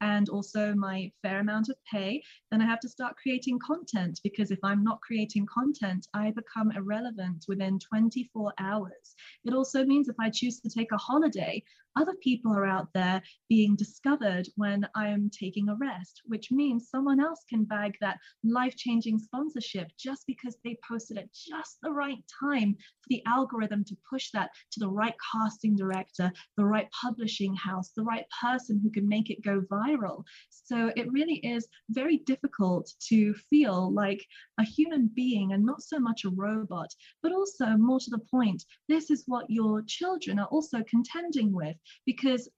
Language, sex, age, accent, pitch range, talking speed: English, female, 20-39, British, 205-255 Hz, 175 wpm